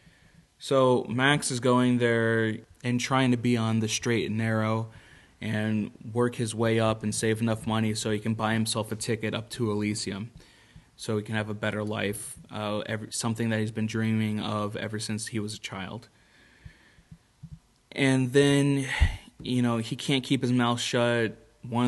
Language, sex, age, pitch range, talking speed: English, male, 20-39, 110-120 Hz, 175 wpm